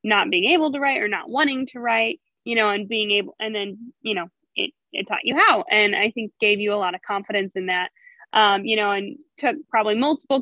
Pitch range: 210-270 Hz